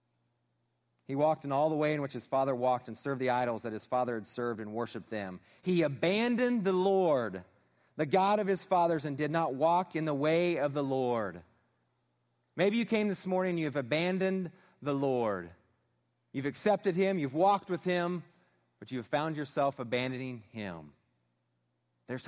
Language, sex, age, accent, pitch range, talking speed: English, male, 30-49, American, 110-170 Hz, 185 wpm